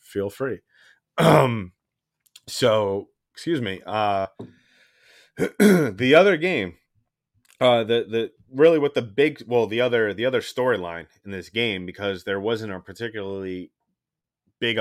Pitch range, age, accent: 95-120 Hz, 30-49, American